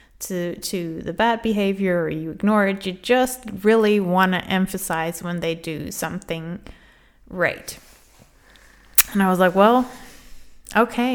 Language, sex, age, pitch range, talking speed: English, female, 30-49, 185-240 Hz, 140 wpm